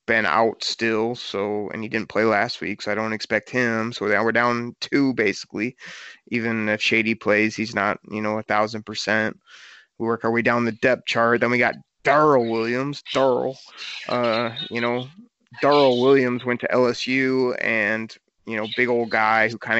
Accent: American